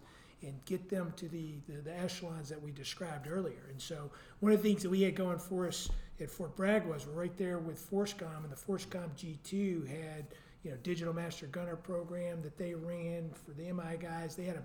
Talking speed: 225 wpm